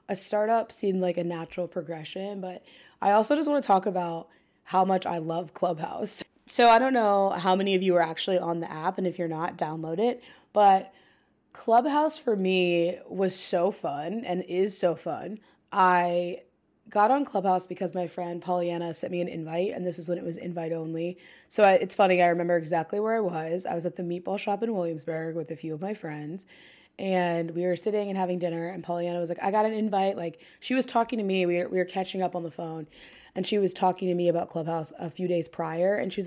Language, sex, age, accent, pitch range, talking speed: English, female, 20-39, American, 175-200 Hz, 230 wpm